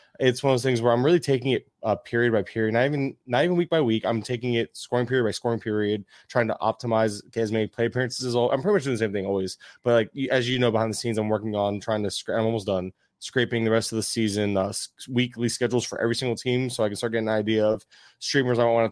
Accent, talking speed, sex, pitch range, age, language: American, 280 wpm, male, 110-120 Hz, 20-39, English